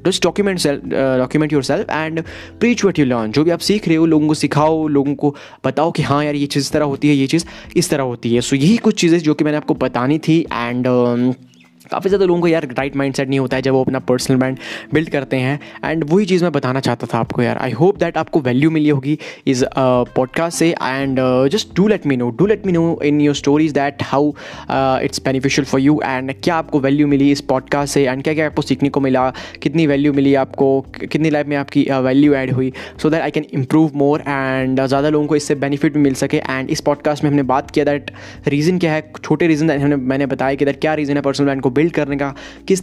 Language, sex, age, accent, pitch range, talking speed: Hindi, male, 20-39, native, 135-155 Hz, 240 wpm